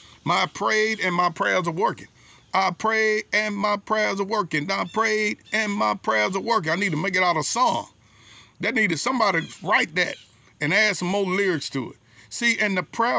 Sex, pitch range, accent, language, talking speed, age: male, 160-215 Hz, American, English, 210 wpm, 50-69